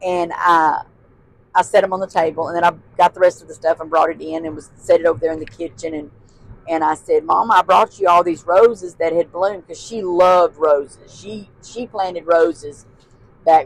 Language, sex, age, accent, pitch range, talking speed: English, female, 40-59, American, 150-195 Hz, 235 wpm